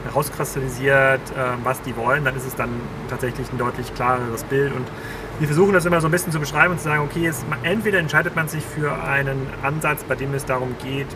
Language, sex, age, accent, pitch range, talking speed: German, male, 30-49, German, 125-145 Hz, 210 wpm